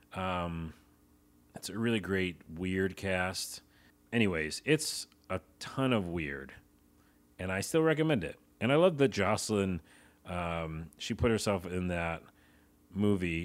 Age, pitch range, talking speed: 40-59, 70-100 Hz, 135 wpm